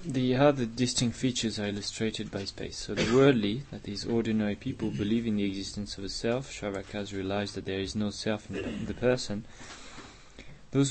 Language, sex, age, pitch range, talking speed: English, male, 20-39, 100-115 Hz, 180 wpm